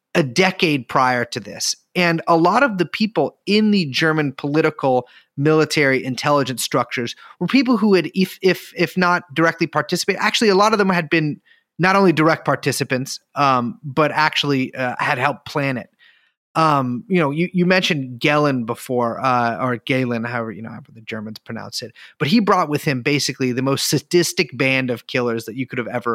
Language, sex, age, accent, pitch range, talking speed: English, male, 30-49, American, 125-170 Hz, 190 wpm